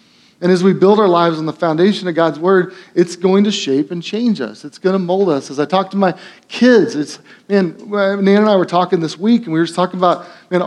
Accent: American